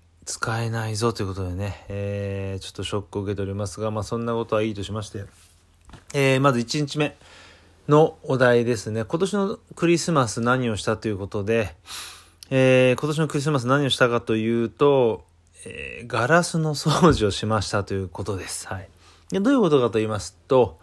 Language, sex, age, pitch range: Japanese, male, 20-39, 100-125 Hz